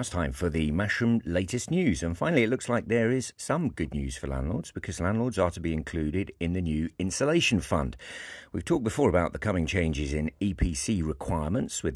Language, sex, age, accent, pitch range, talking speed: English, male, 50-69, British, 80-100 Hz, 205 wpm